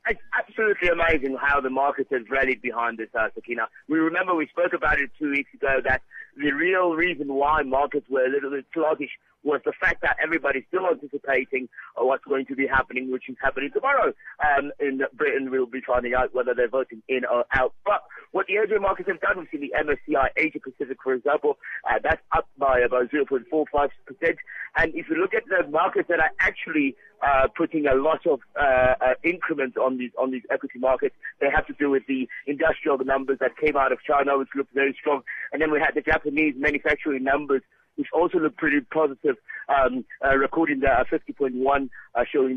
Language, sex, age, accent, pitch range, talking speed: English, male, 50-69, British, 135-165 Hz, 200 wpm